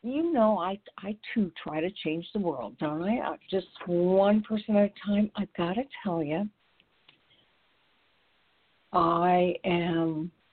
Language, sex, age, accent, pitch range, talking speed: English, female, 60-79, American, 155-200 Hz, 140 wpm